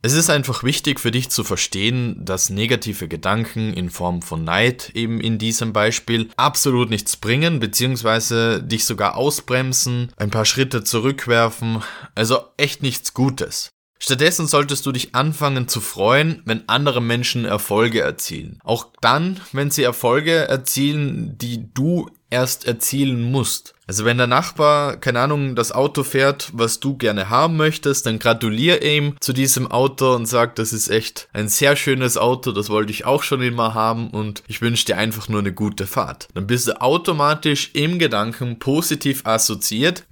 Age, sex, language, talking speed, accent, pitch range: 20-39, male, German, 165 wpm, German, 110-140 Hz